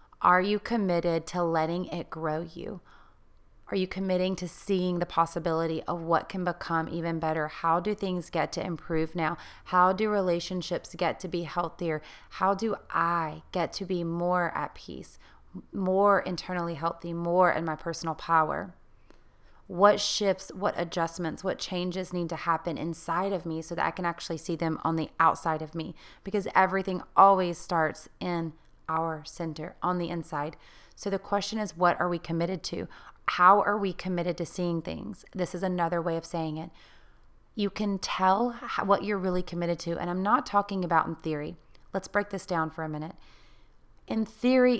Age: 30-49